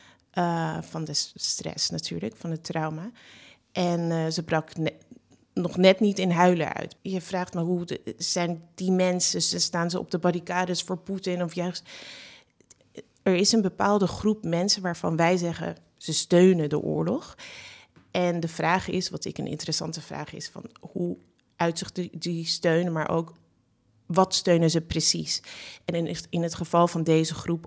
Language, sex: Dutch, female